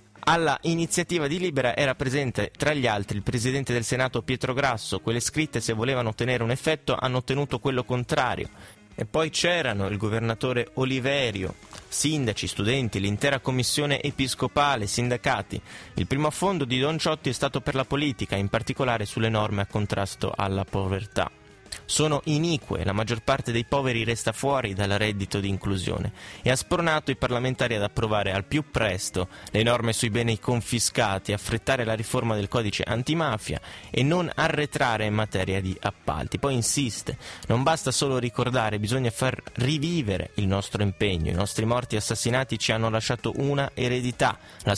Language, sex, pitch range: Italian, male, 105-140 Hz